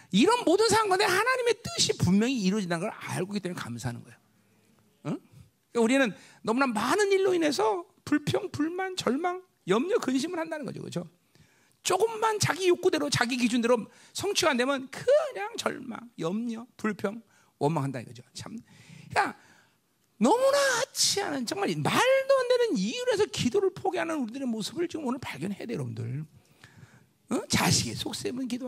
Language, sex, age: Korean, male, 40-59